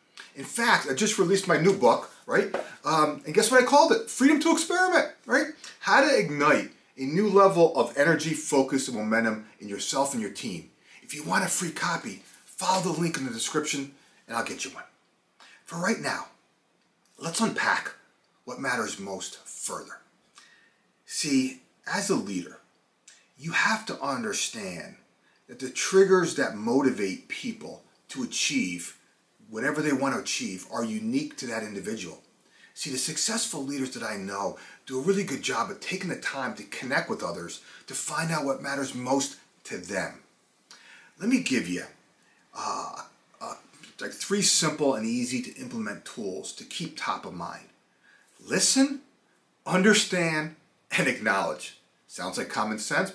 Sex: male